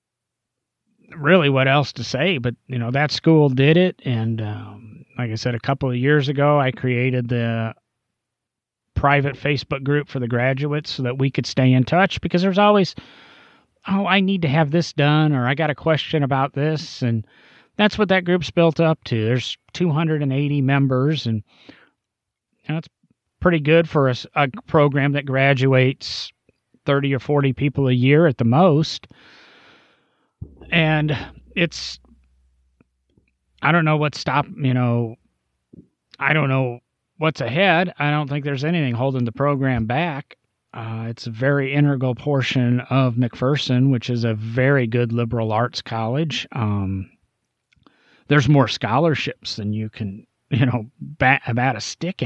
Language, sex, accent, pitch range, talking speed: English, male, American, 120-150 Hz, 160 wpm